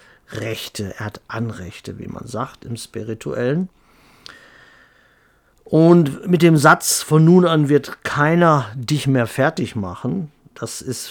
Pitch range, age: 115-150 Hz, 50-69